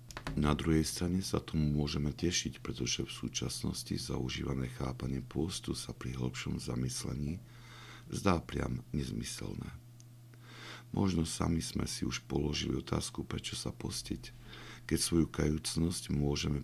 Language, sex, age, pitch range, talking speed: Slovak, male, 50-69, 70-110 Hz, 125 wpm